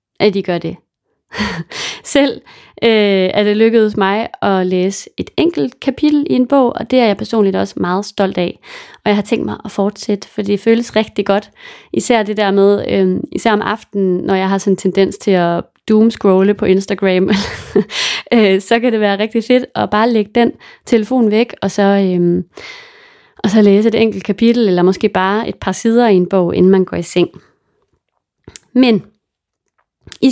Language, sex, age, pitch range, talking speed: English, female, 30-49, 195-240 Hz, 190 wpm